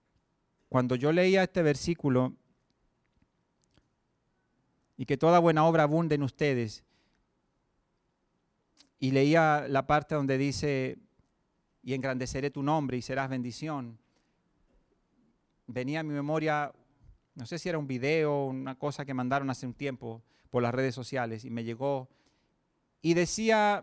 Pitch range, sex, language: 125-155 Hz, male, Spanish